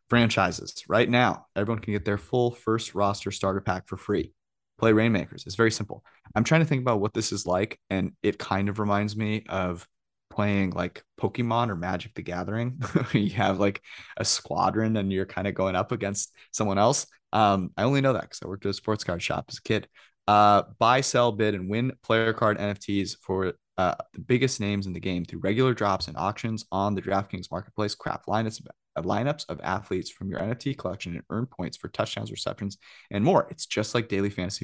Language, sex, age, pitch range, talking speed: English, male, 20-39, 95-115 Hz, 210 wpm